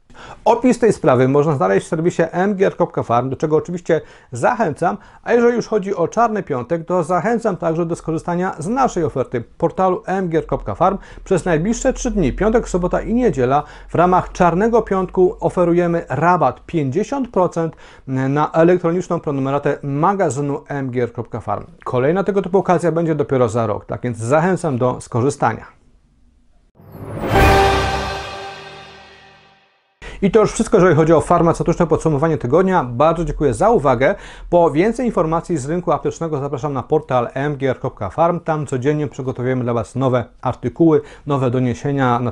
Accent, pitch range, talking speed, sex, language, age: native, 130-180 Hz, 135 wpm, male, Polish, 40-59